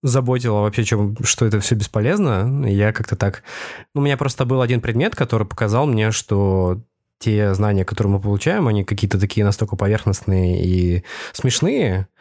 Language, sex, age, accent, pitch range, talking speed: Russian, male, 20-39, native, 100-120 Hz, 155 wpm